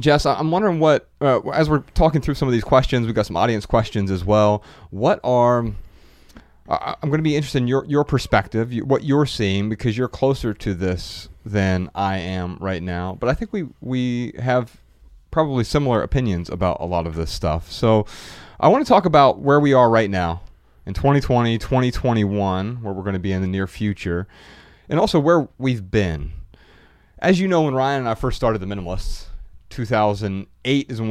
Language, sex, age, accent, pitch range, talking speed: English, male, 30-49, American, 90-125 Hz, 195 wpm